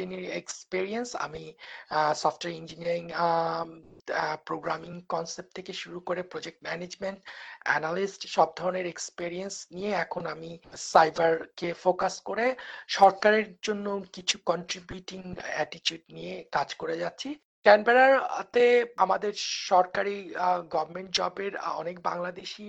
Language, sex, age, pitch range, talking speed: Bengali, male, 50-69, 170-200 Hz, 90 wpm